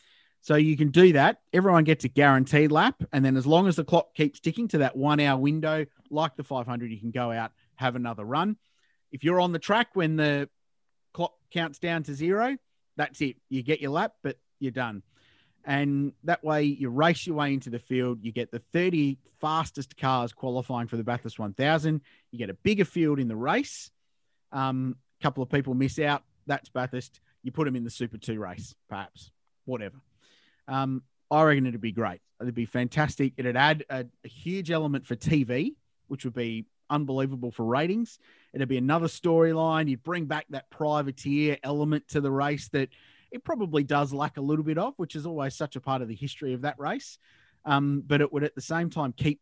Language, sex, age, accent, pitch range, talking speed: English, male, 30-49, Australian, 125-155 Hz, 205 wpm